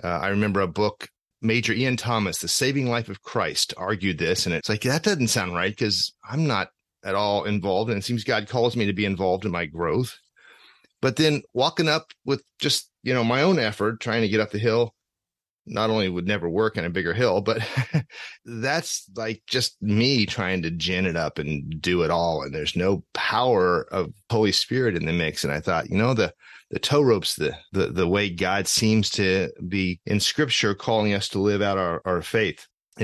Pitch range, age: 100-120 Hz, 30-49